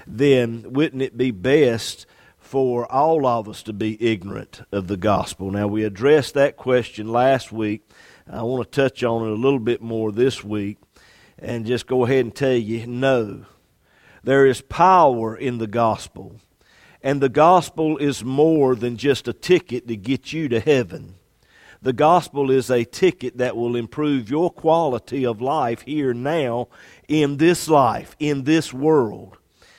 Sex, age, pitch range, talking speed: male, 50-69, 115-150 Hz, 165 wpm